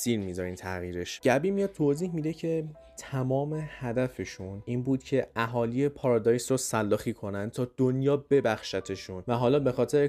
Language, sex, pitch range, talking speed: Persian, male, 110-140 Hz, 150 wpm